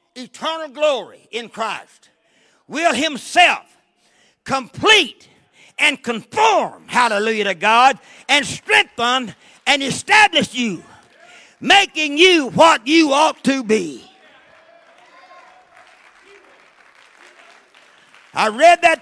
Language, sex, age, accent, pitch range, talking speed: English, male, 50-69, American, 200-300 Hz, 85 wpm